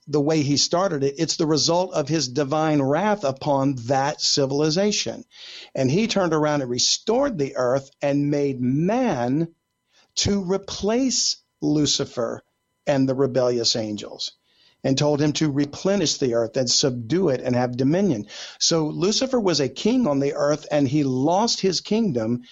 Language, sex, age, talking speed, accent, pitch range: English, male, 50-69, 155 wpm, American, 135-175 Hz